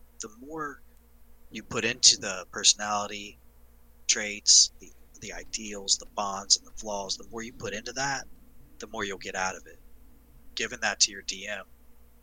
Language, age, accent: English, 30-49, American